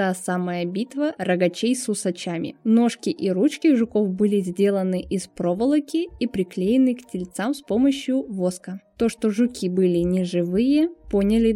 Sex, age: female, 20-39